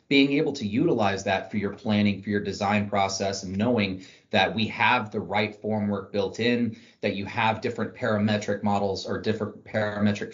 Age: 30-49